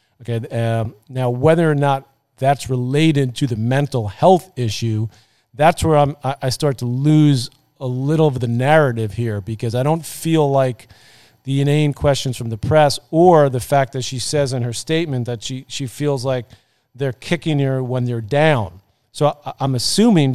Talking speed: 180 wpm